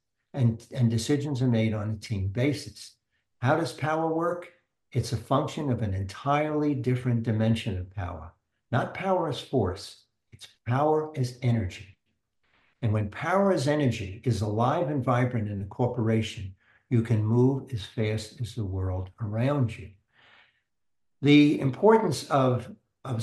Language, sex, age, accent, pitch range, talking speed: English, male, 60-79, American, 110-130 Hz, 145 wpm